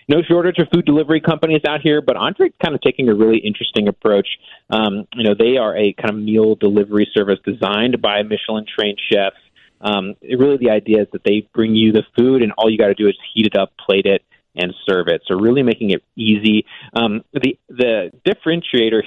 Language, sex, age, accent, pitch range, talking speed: English, male, 30-49, American, 105-125 Hz, 215 wpm